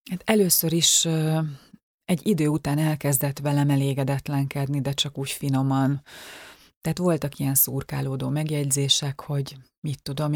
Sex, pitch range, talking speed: female, 140-155 Hz, 120 wpm